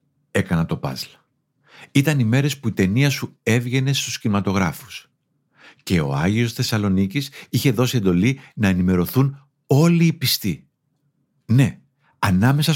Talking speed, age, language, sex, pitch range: 125 wpm, 50-69, Greek, male, 105-145 Hz